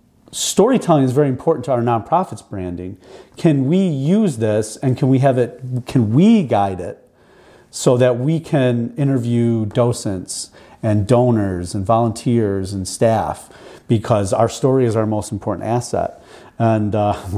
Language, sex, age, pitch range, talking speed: English, male, 40-59, 105-130 Hz, 150 wpm